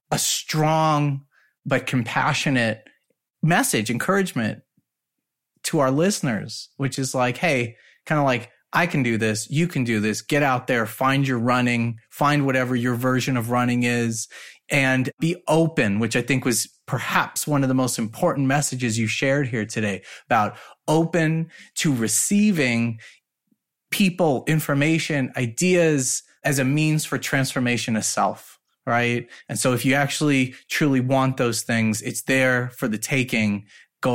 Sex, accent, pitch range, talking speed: male, American, 115-145 Hz, 150 wpm